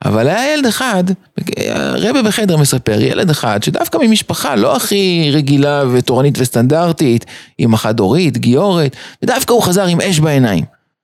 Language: Hebrew